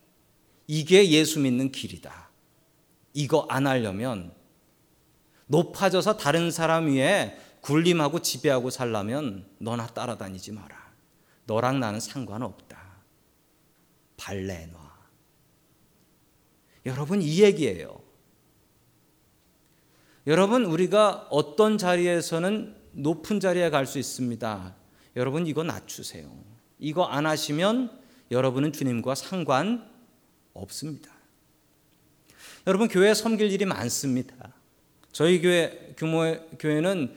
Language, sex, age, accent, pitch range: Korean, male, 40-59, native, 130-200 Hz